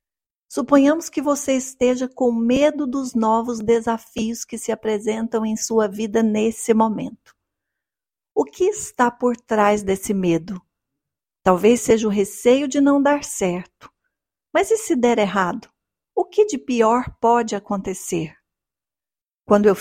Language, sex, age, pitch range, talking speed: Portuguese, female, 50-69, 210-255 Hz, 135 wpm